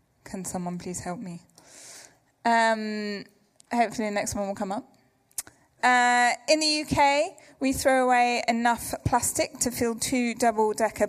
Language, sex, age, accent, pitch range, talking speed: English, female, 20-39, British, 220-270 Hz, 140 wpm